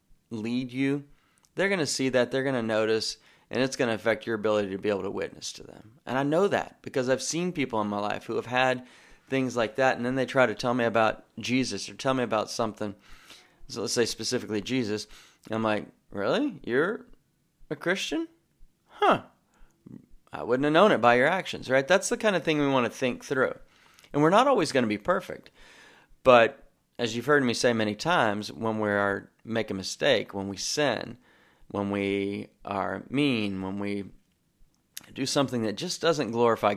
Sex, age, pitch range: male, 30-49, 105-130 Hz